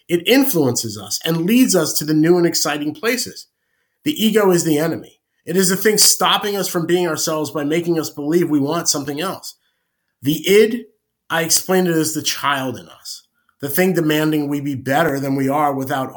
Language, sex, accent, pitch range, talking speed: English, male, American, 140-180 Hz, 200 wpm